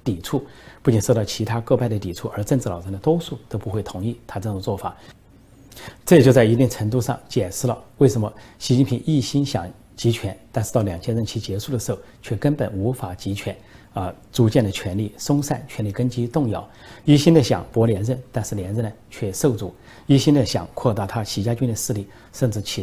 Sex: male